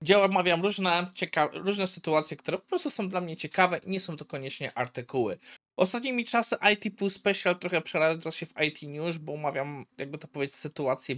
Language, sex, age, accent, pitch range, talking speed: Polish, male, 20-39, native, 125-175 Hz, 190 wpm